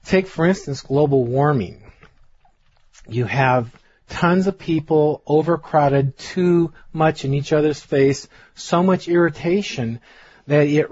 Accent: American